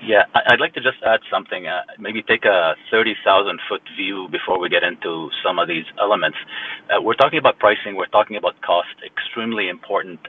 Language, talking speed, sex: English, 185 wpm, male